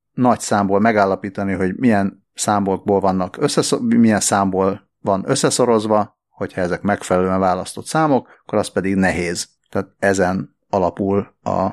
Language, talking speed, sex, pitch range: Hungarian, 115 wpm, male, 95-120 Hz